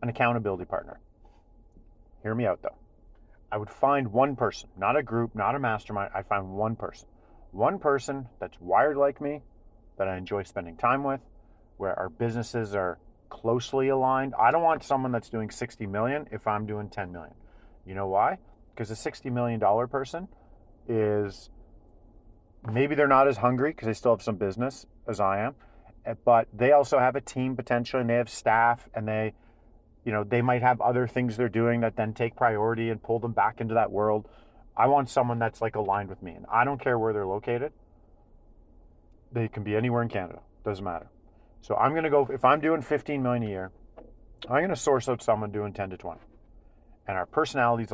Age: 40-59